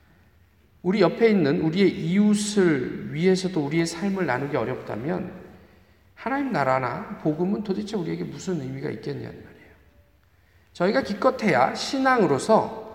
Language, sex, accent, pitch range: Korean, male, native, 145-220 Hz